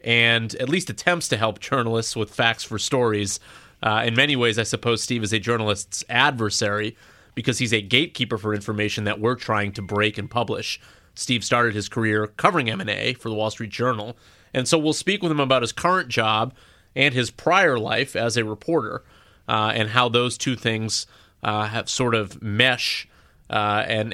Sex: male